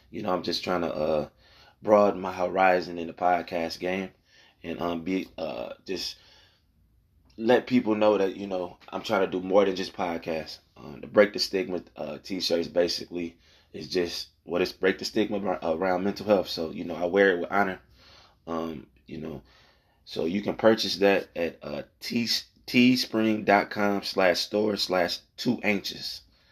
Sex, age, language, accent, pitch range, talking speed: male, 20-39, English, American, 85-100 Hz, 175 wpm